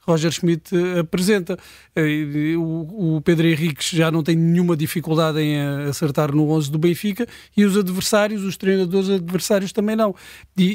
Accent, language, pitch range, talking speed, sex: Portuguese, Portuguese, 165-195 Hz, 145 wpm, male